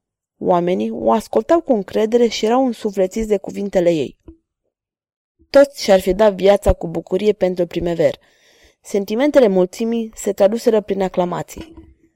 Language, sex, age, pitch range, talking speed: Romanian, female, 20-39, 180-220 Hz, 130 wpm